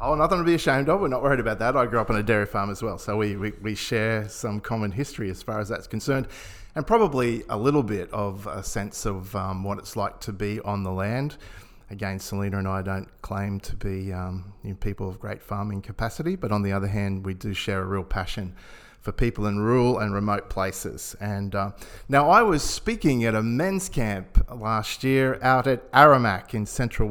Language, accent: English, Australian